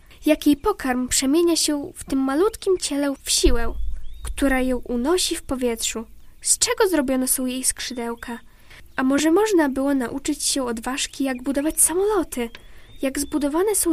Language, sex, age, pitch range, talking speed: Polish, female, 10-29, 240-320 Hz, 155 wpm